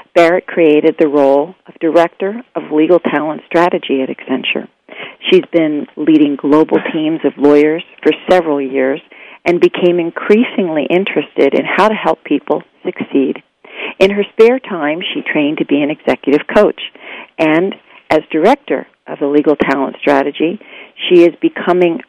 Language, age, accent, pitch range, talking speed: English, 50-69, American, 145-175 Hz, 145 wpm